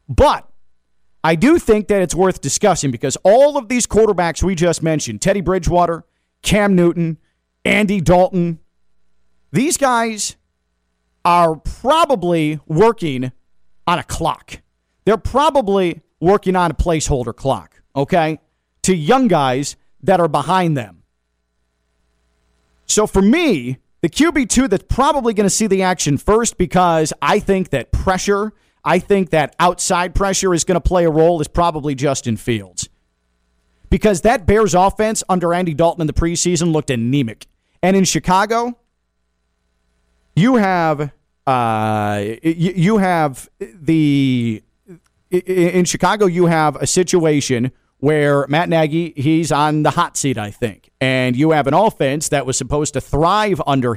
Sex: male